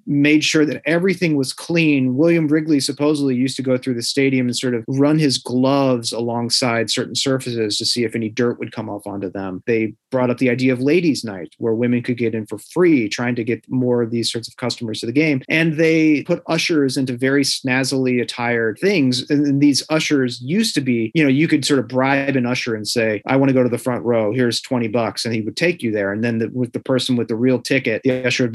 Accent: American